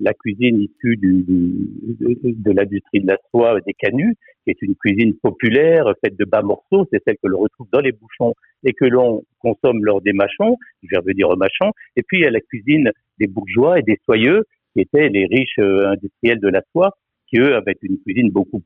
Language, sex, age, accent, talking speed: French, male, 60-79, French, 210 wpm